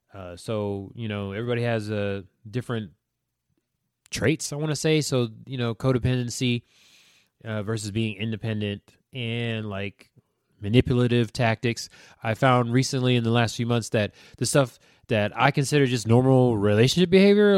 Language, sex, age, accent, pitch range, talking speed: English, male, 20-39, American, 115-165 Hz, 145 wpm